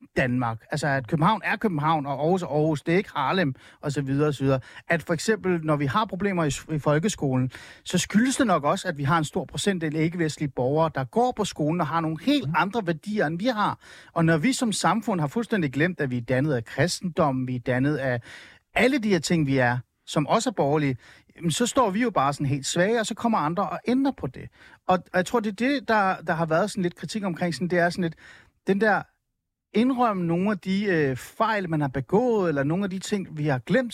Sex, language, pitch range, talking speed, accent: male, Danish, 150-205 Hz, 240 wpm, native